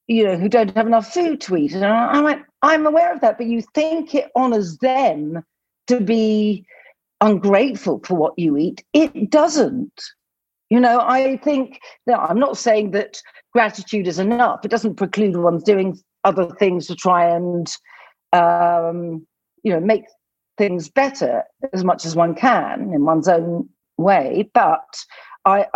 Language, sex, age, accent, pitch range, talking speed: English, female, 50-69, British, 190-270 Hz, 170 wpm